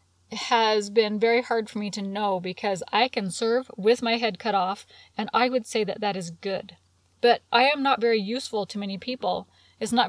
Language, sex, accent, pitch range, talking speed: English, female, American, 190-230 Hz, 215 wpm